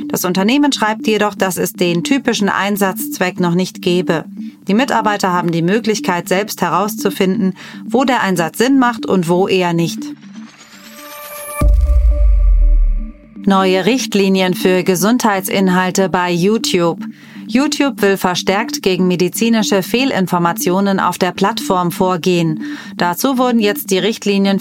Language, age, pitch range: German, 30-49, 180-220 Hz